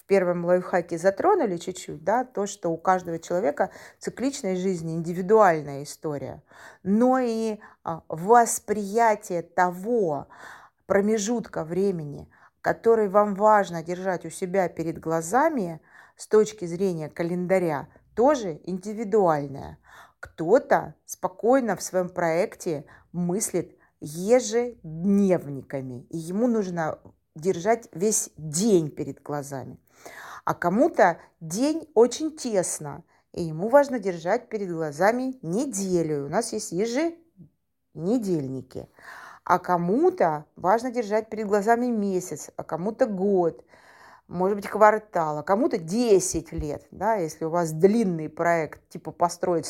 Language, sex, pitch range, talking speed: Russian, female, 165-220 Hz, 110 wpm